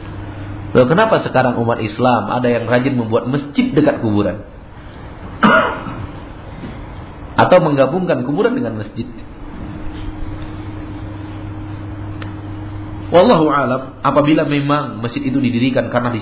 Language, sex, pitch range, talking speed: Malay, male, 100-110 Hz, 95 wpm